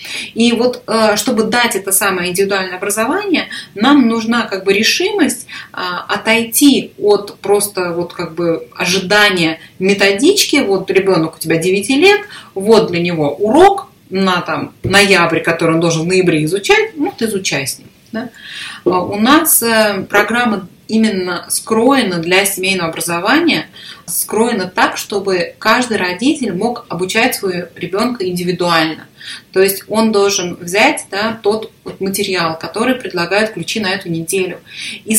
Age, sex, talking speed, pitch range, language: 20-39, female, 135 wpm, 185-240 Hz, Russian